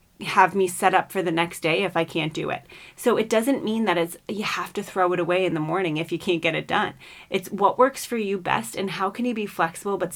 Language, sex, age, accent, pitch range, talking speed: English, female, 30-49, American, 165-200 Hz, 280 wpm